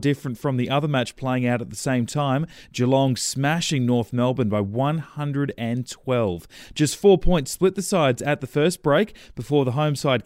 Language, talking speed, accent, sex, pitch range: English, 180 wpm, Australian, male, 125-165 Hz